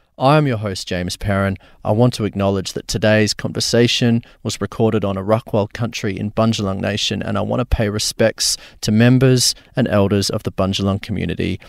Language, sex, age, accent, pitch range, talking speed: English, male, 30-49, Australian, 105-130 Hz, 185 wpm